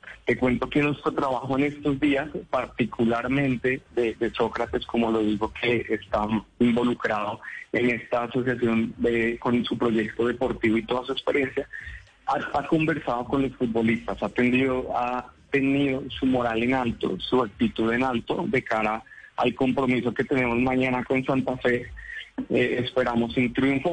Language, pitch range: Spanish, 120-140 Hz